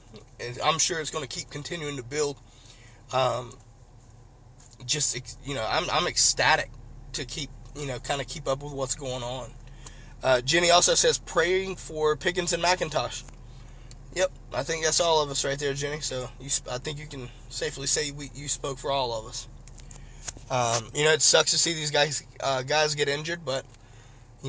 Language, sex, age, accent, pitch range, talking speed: English, male, 20-39, American, 125-155 Hz, 190 wpm